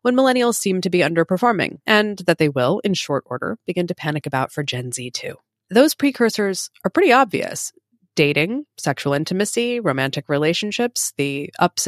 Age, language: 20-39, English